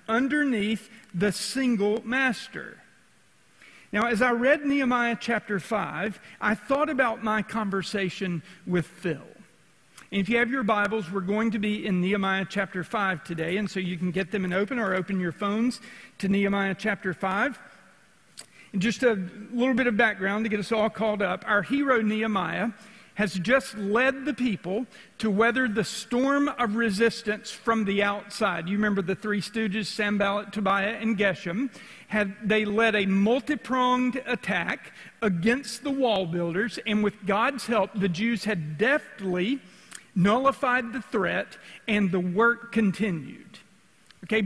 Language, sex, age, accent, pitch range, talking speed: English, male, 50-69, American, 195-235 Hz, 150 wpm